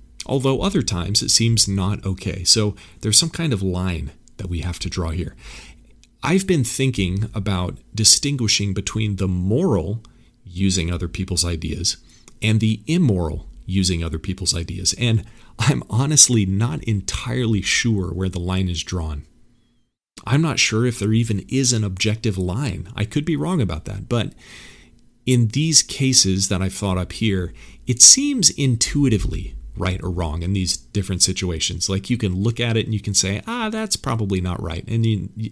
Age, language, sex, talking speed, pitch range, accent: 40-59, English, male, 170 wpm, 90-115 Hz, American